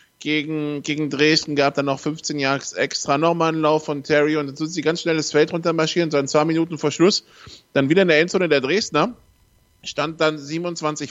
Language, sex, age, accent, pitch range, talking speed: German, male, 20-39, German, 145-170 Hz, 215 wpm